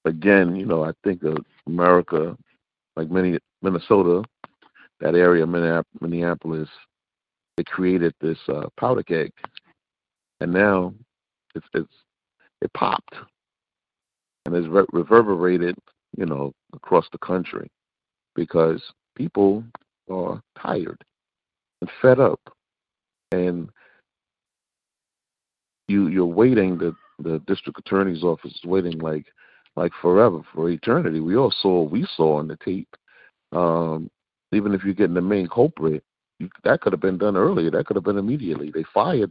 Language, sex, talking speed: English, male, 135 wpm